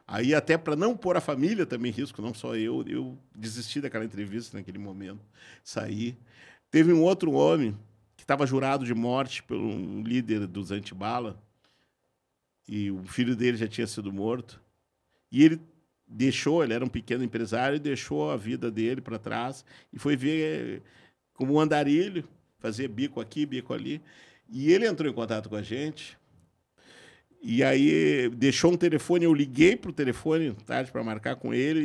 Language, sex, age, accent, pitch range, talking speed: Portuguese, male, 50-69, Brazilian, 115-155 Hz, 170 wpm